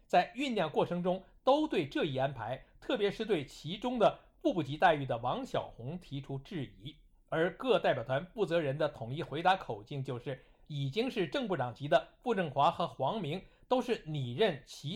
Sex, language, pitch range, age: male, Chinese, 135-195 Hz, 60-79